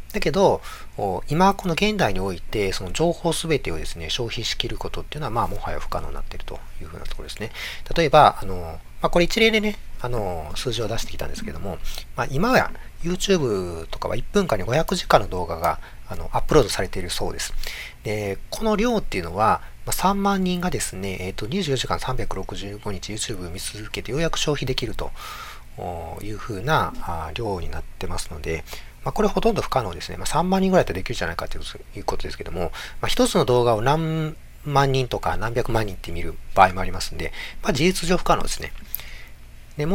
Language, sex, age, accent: Japanese, male, 40-59, native